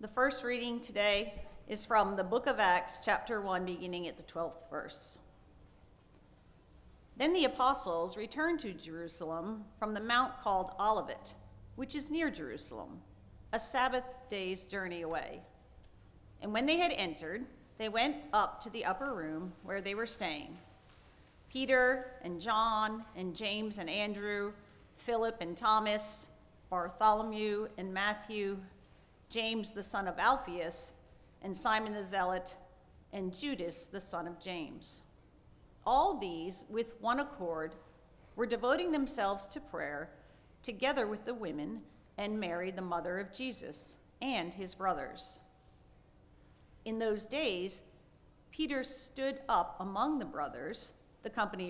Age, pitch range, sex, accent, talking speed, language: 40-59, 180-240 Hz, female, American, 135 wpm, English